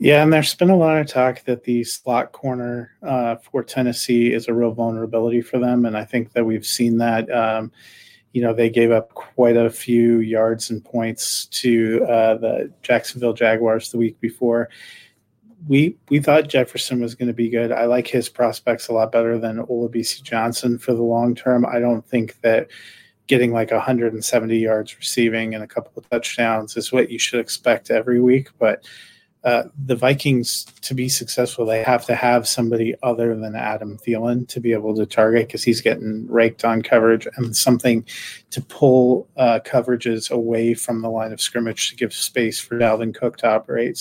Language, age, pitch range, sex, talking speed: English, 30-49, 115-125 Hz, male, 190 wpm